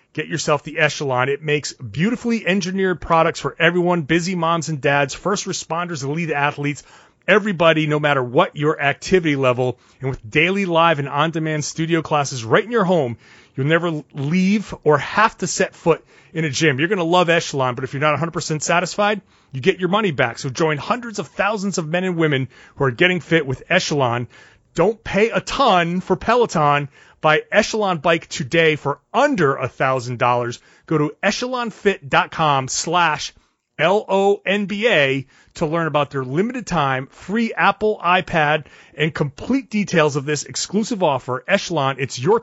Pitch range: 140-185 Hz